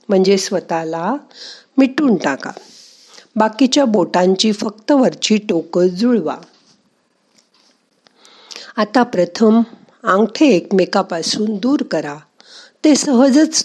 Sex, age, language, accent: female, 50-69, Marathi, native